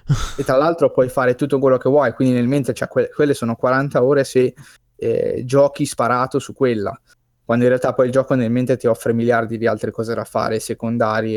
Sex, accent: male, native